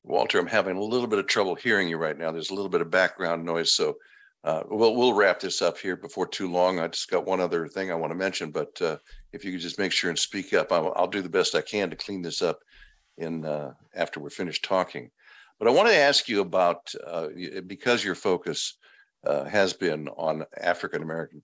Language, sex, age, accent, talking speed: English, male, 60-79, American, 240 wpm